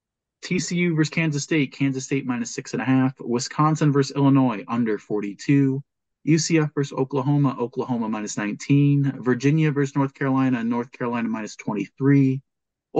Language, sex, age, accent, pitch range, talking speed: English, male, 30-49, American, 115-140 Hz, 110 wpm